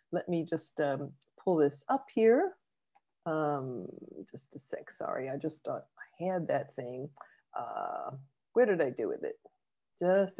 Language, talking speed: English, 160 wpm